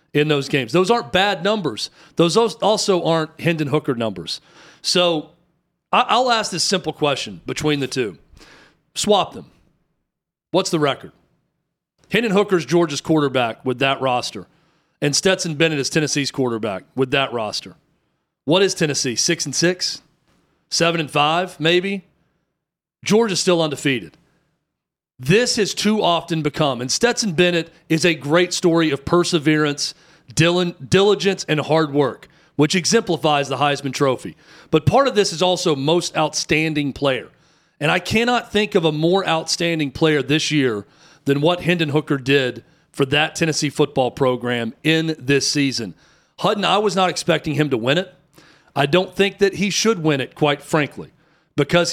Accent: American